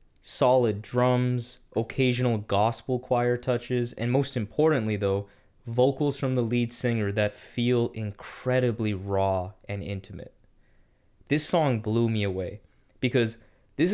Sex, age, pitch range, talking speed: male, 20-39, 105-130 Hz, 120 wpm